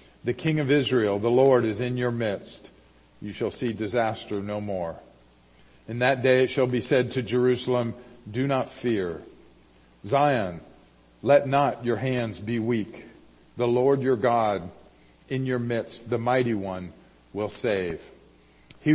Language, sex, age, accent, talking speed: English, male, 50-69, American, 150 wpm